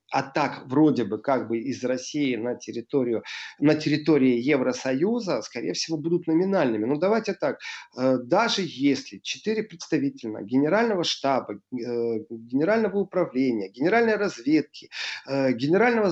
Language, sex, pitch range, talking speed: Russian, male, 135-185 Hz, 115 wpm